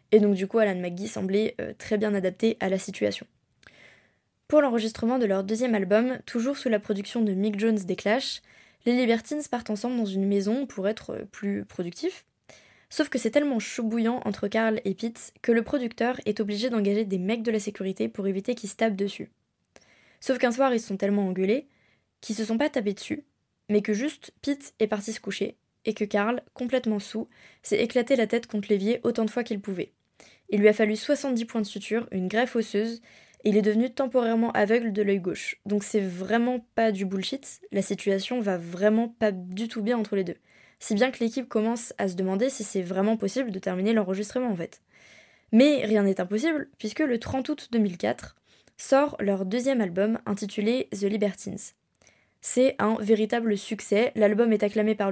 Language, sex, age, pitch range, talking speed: French, female, 20-39, 200-240 Hz, 200 wpm